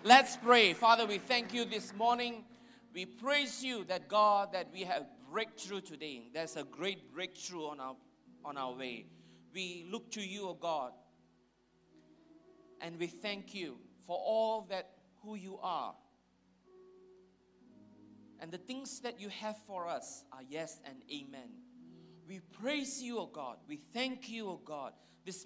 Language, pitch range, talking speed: English, 135-215 Hz, 165 wpm